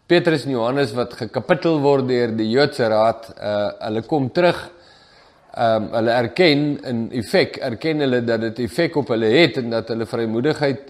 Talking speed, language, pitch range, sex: 170 wpm, English, 115-145 Hz, male